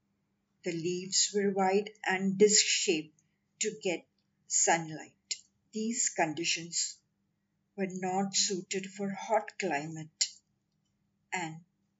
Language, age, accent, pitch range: English, 50-69, Indian, 175-210 Hz